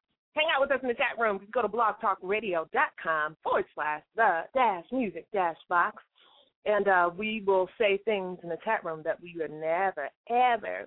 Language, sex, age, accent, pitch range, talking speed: English, female, 30-49, American, 175-250 Hz, 190 wpm